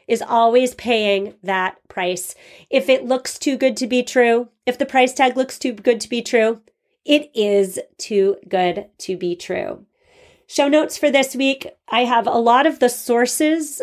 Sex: female